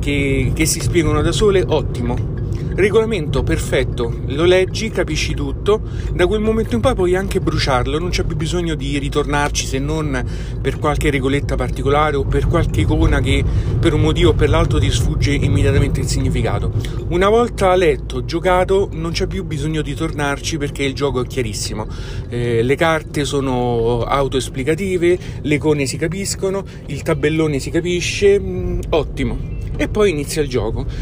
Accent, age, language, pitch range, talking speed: native, 40-59, Italian, 115-155 Hz, 160 wpm